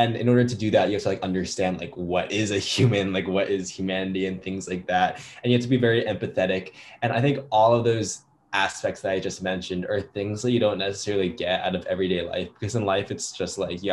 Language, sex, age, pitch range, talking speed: English, male, 10-29, 90-115 Hz, 255 wpm